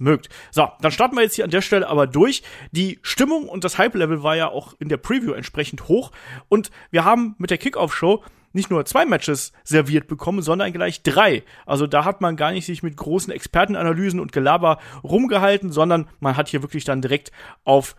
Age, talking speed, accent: 40-59, 205 wpm, German